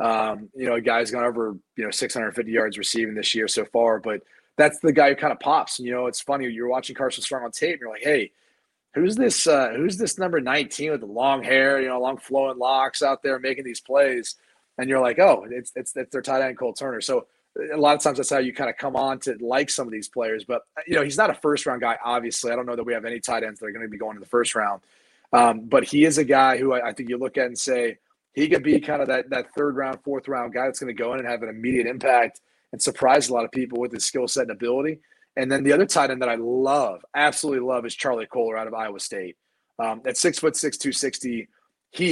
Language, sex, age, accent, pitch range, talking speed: English, male, 30-49, American, 120-140 Hz, 275 wpm